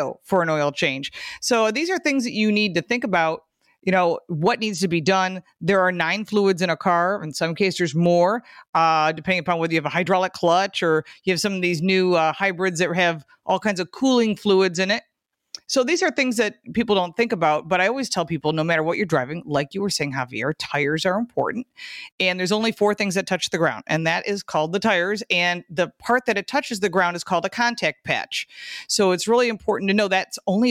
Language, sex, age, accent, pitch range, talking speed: English, female, 40-59, American, 170-210 Hz, 240 wpm